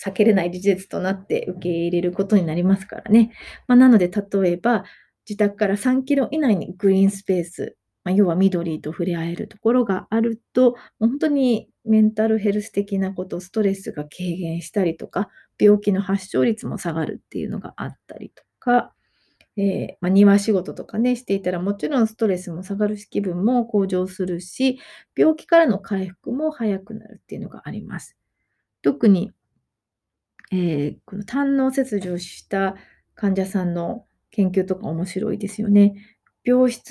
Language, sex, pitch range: Japanese, female, 185-225 Hz